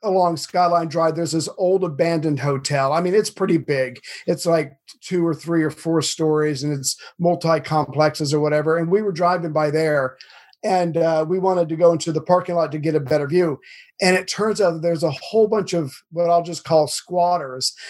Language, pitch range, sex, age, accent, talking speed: English, 150-180 Hz, male, 50-69, American, 210 wpm